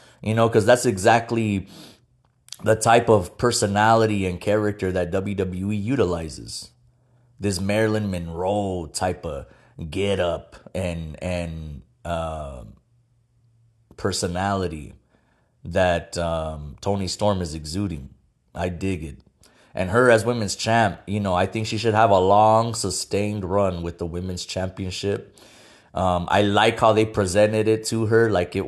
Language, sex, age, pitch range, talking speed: English, male, 30-49, 90-110 Hz, 140 wpm